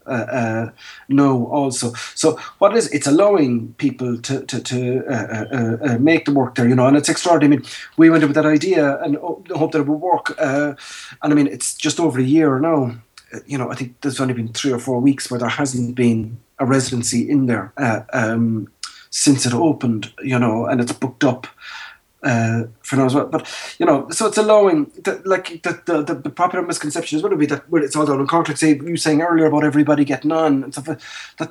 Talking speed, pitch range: 230 wpm, 125-150 Hz